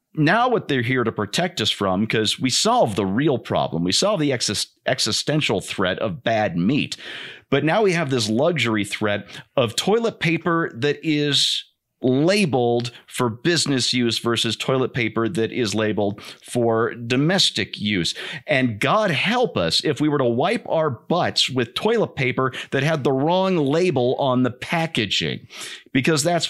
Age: 40-59